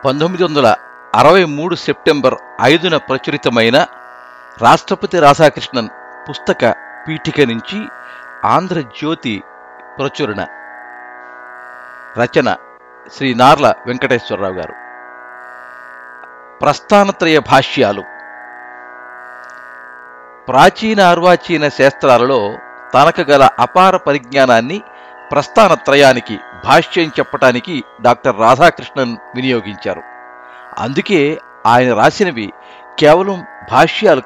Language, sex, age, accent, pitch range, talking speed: Telugu, male, 50-69, native, 115-150 Hz, 65 wpm